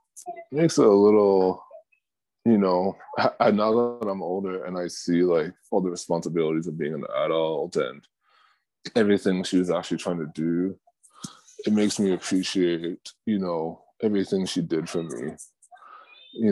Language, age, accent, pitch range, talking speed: English, 20-39, American, 85-110 Hz, 155 wpm